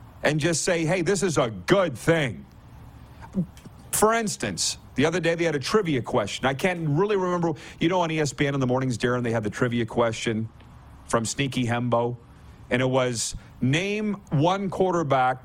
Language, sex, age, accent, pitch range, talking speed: English, male, 50-69, American, 130-185 Hz, 175 wpm